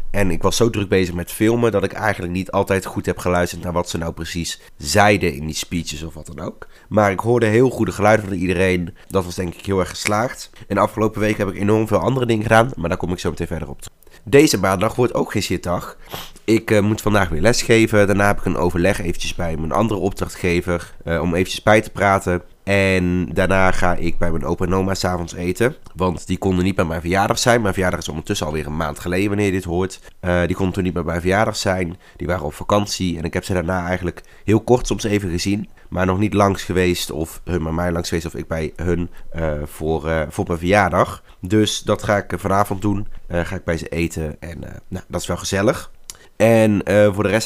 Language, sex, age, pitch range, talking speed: Dutch, male, 30-49, 85-105 Hz, 240 wpm